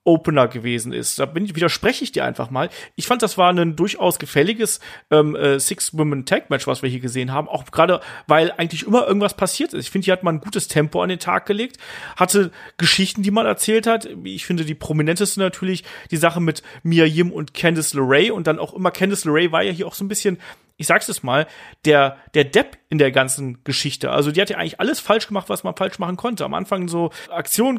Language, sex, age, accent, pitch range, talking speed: German, male, 40-59, German, 150-190 Hz, 230 wpm